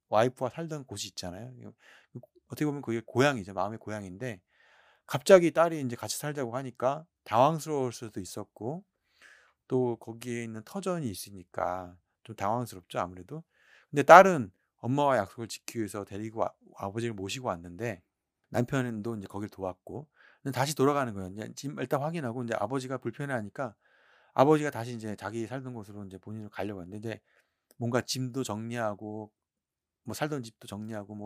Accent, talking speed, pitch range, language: Korean, 130 wpm, 105-140 Hz, English